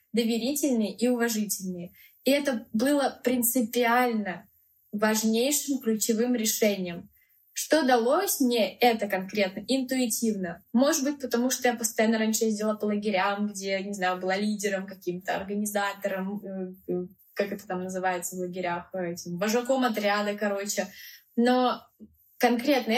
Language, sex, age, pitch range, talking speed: Russian, female, 10-29, 190-245 Hz, 115 wpm